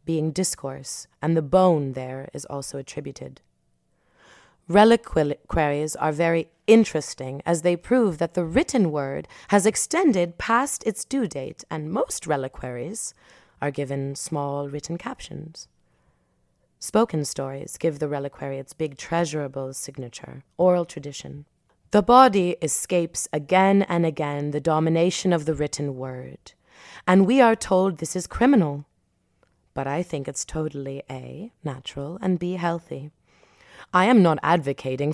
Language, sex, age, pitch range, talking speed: German, female, 30-49, 140-180 Hz, 135 wpm